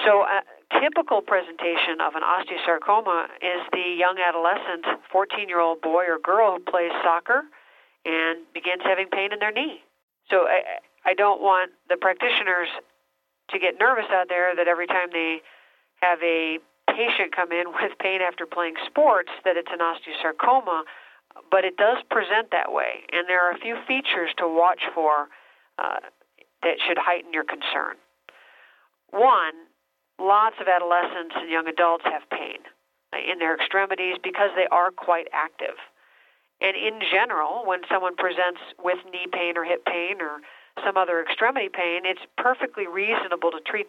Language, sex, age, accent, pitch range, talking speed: English, female, 50-69, American, 170-195 Hz, 160 wpm